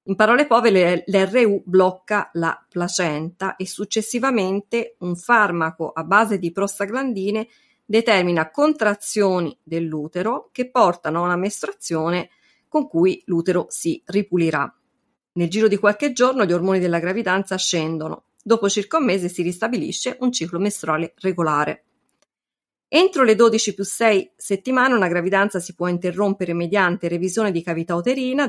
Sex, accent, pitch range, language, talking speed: female, native, 175-230 Hz, Italian, 135 wpm